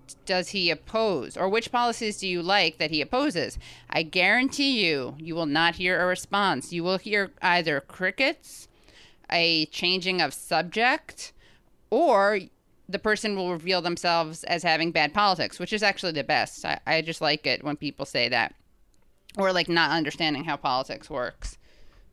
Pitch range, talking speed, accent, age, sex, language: 160-190 Hz, 165 wpm, American, 30-49, female, English